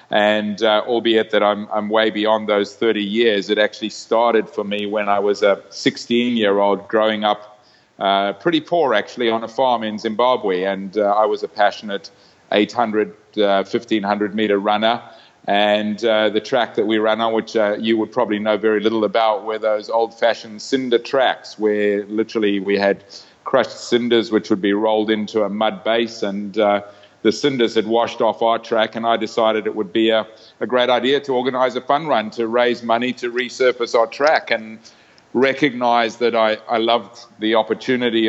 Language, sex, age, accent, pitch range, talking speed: English, male, 30-49, Australian, 105-115 Hz, 185 wpm